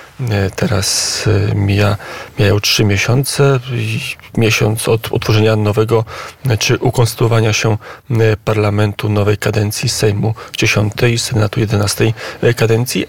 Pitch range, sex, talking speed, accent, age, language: 115-130 Hz, male, 100 wpm, native, 40-59, Polish